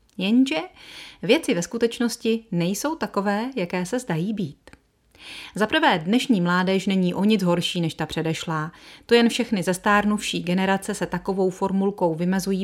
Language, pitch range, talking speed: Czech, 175-240 Hz, 140 wpm